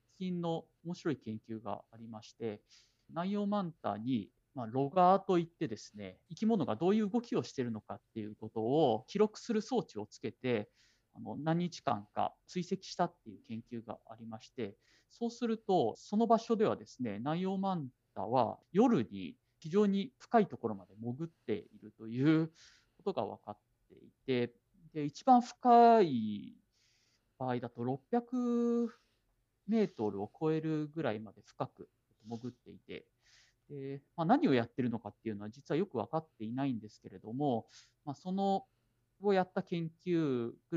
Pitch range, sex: 115-190 Hz, male